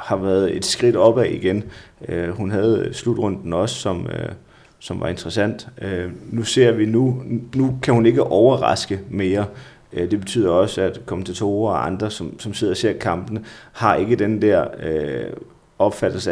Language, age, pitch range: Danish, 30-49, 95-115 Hz